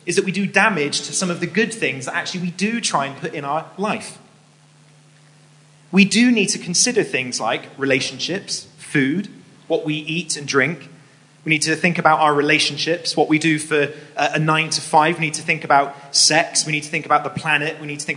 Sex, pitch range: male, 150-190 Hz